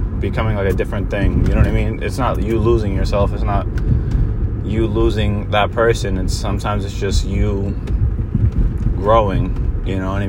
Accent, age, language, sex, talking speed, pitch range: American, 20-39, English, male, 180 wpm, 90-110 Hz